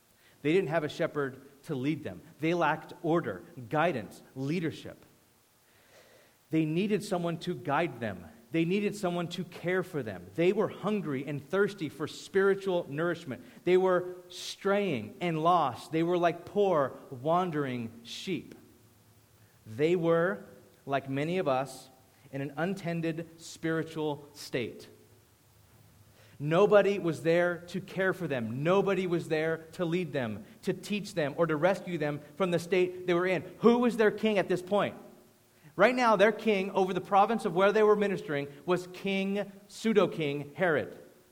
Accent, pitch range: American, 145-185 Hz